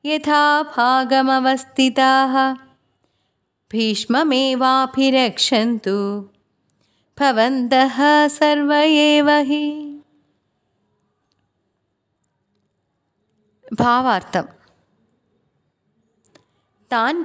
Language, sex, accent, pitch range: Malayalam, female, native, 195-265 Hz